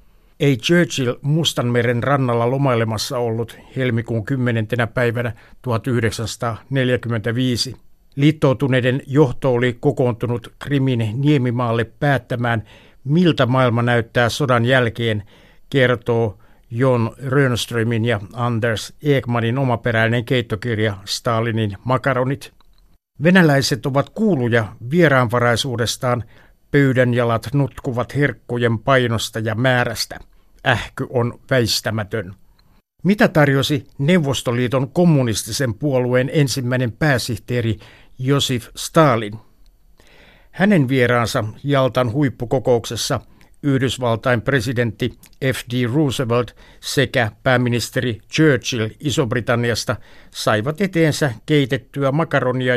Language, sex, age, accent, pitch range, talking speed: Finnish, male, 60-79, native, 115-135 Hz, 80 wpm